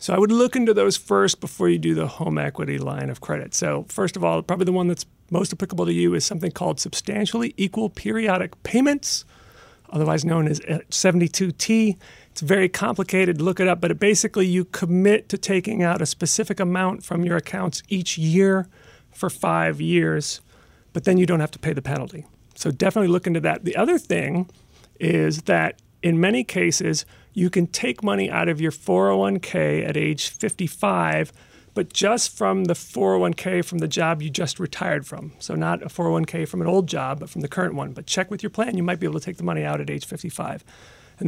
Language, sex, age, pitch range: English, male, 40-59, 140-185 Hz